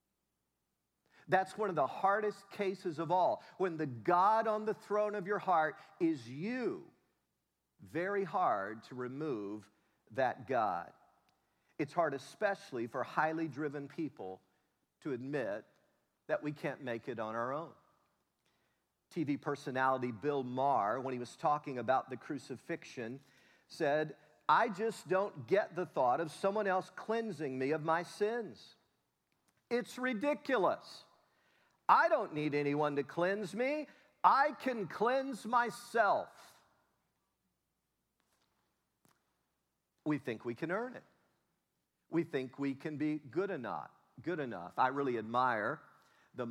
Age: 50-69